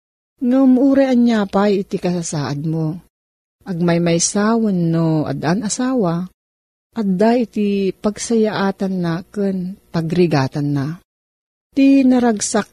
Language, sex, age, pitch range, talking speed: Filipino, female, 40-59, 165-215 Hz, 115 wpm